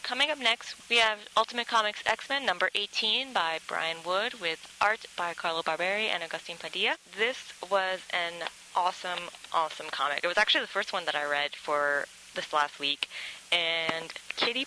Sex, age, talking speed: female, 20-39, 170 wpm